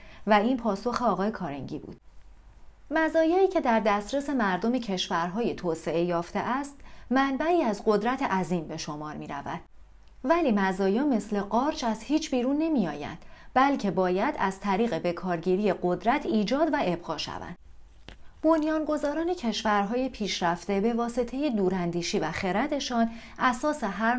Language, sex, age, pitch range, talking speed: Persian, female, 40-59, 185-250 Hz, 130 wpm